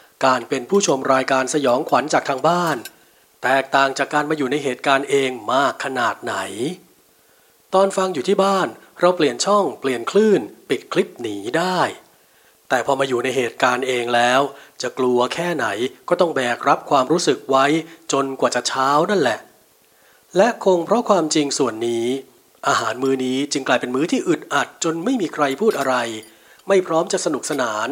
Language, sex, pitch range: English, male, 135-185 Hz